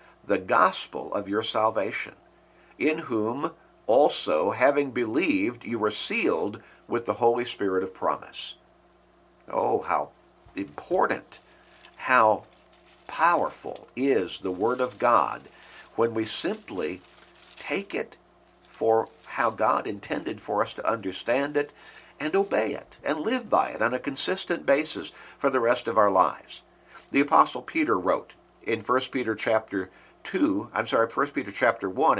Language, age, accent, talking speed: English, 50-69, American, 140 wpm